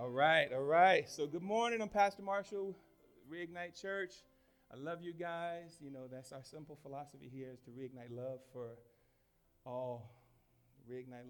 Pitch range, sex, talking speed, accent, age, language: 110-135 Hz, male, 160 wpm, American, 40-59, English